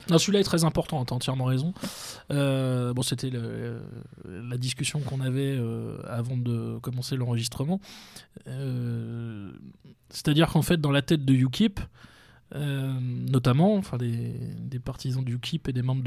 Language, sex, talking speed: French, male, 155 wpm